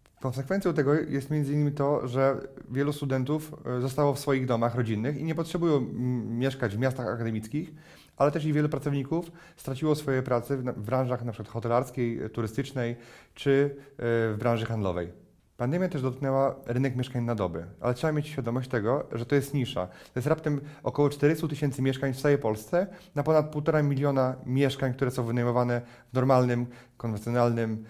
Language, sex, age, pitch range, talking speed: Polish, male, 30-49, 120-145 Hz, 165 wpm